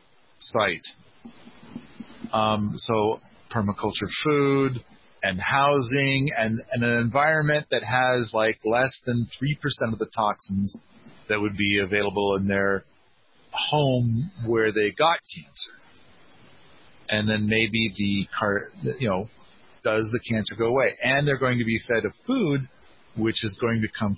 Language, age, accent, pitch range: English, 40-59, American, 105-140 Hz